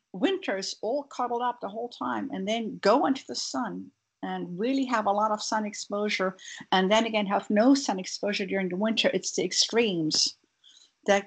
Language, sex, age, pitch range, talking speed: English, female, 60-79, 185-230 Hz, 185 wpm